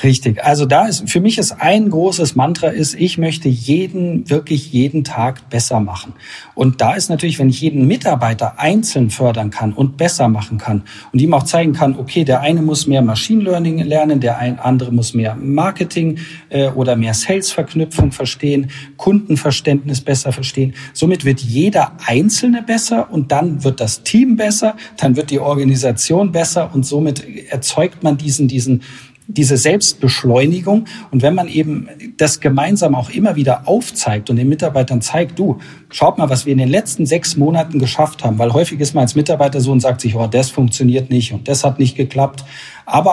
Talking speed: 180 wpm